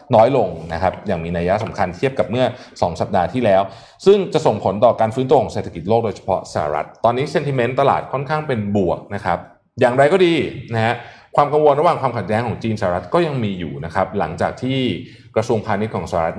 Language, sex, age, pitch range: Thai, male, 20-39, 100-135 Hz